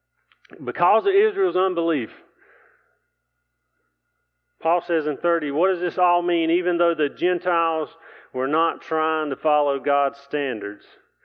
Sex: male